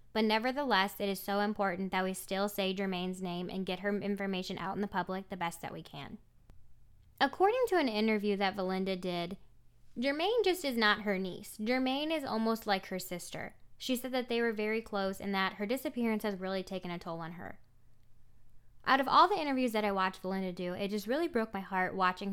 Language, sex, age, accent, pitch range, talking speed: English, female, 10-29, American, 190-240 Hz, 210 wpm